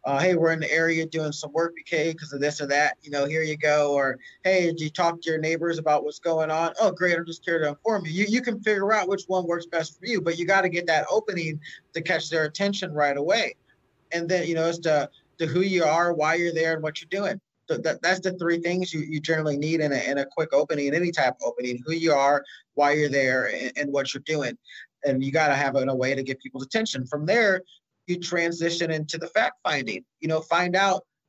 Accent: American